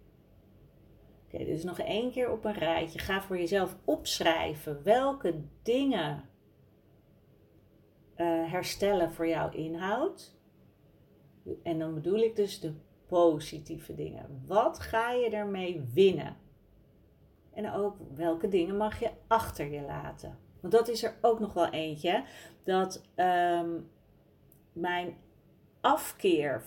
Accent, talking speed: Dutch, 120 wpm